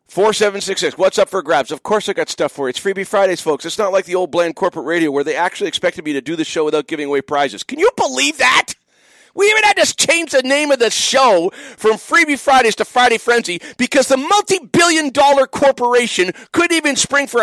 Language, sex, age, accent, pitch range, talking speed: English, male, 50-69, American, 170-245 Hz, 225 wpm